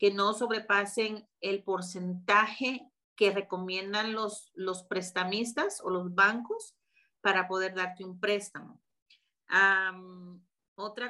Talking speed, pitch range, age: 110 wpm, 195-235 Hz, 40-59